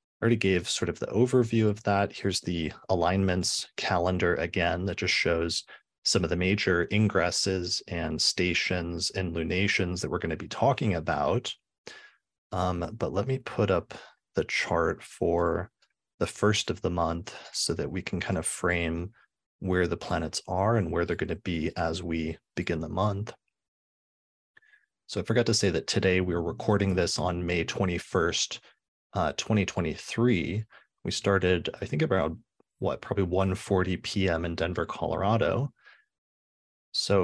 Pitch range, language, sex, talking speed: 85-100 Hz, English, male, 155 wpm